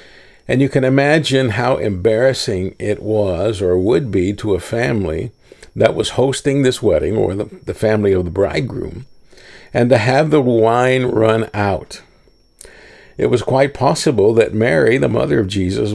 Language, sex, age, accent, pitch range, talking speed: English, male, 50-69, American, 100-125 Hz, 160 wpm